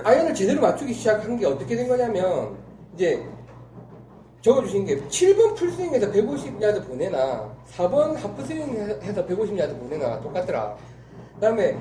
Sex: male